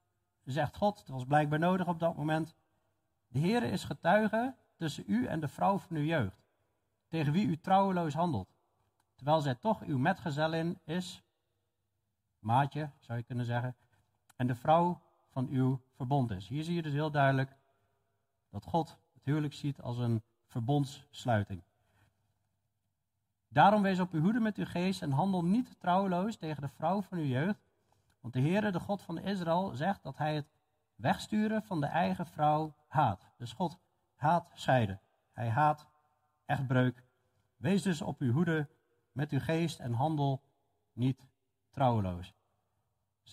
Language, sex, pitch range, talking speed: Dutch, male, 110-160 Hz, 160 wpm